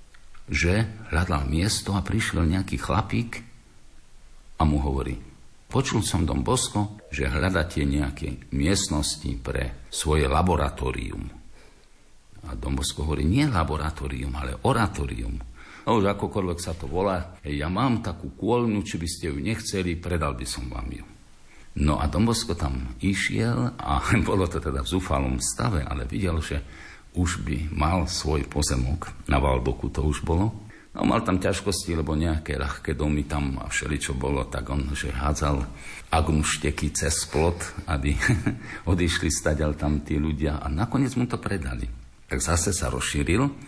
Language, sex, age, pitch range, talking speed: Slovak, male, 60-79, 70-95 Hz, 145 wpm